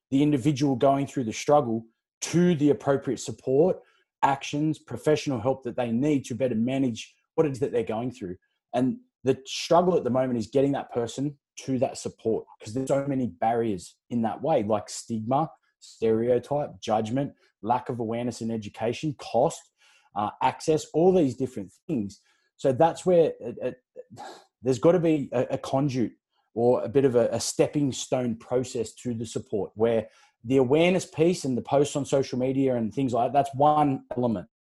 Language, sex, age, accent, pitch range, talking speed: English, male, 20-39, Australian, 115-140 Hz, 175 wpm